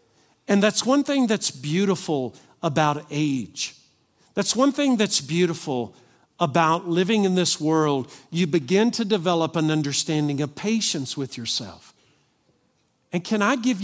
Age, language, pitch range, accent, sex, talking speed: 50-69, English, 135-195 Hz, American, male, 140 wpm